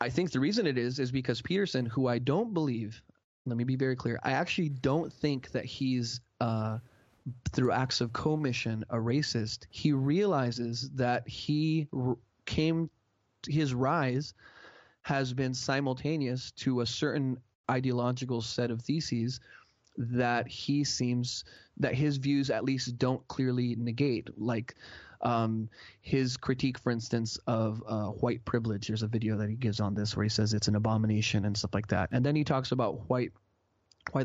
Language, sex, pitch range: English, male, 115-135 Hz